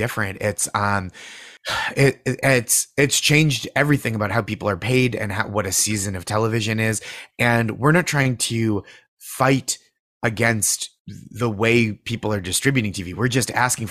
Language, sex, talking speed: English, male, 160 wpm